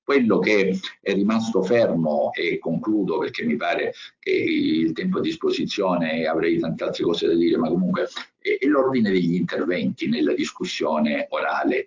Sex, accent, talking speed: male, native, 150 wpm